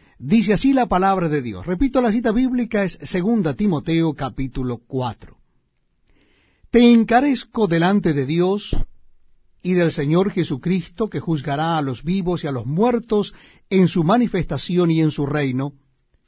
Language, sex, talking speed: Spanish, male, 145 wpm